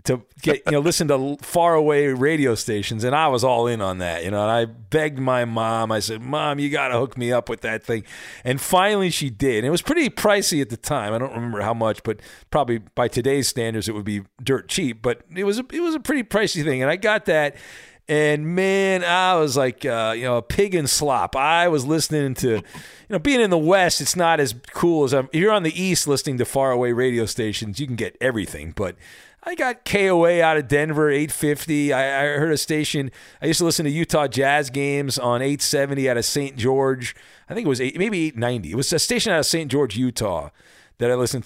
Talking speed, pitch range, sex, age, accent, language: 235 wpm, 125-175 Hz, male, 40-59, American, English